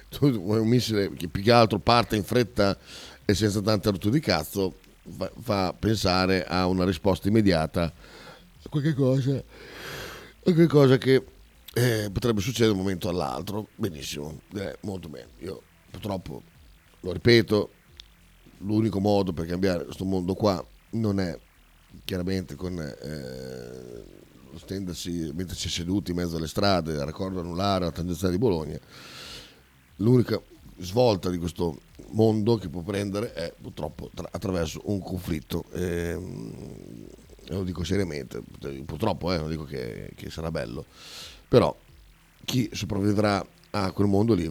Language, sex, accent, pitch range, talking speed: Italian, male, native, 80-100 Hz, 140 wpm